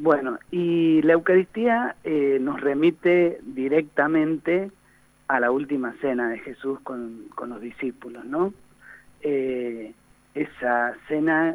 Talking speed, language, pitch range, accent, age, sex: 115 wpm, Spanish, 125-175 Hz, Argentinian, 50-69, male